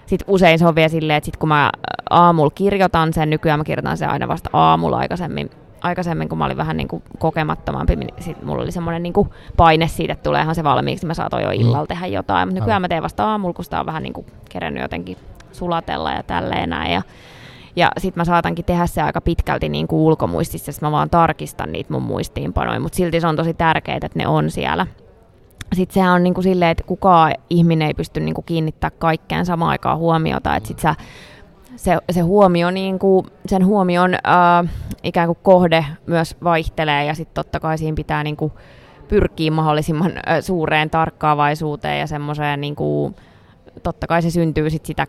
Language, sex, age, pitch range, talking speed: Finnish, female, 20-39, 140-175 Hz, 185 wpm